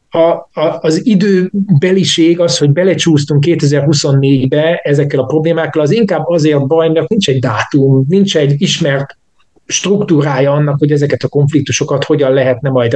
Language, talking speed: Hungarian, 145 wpm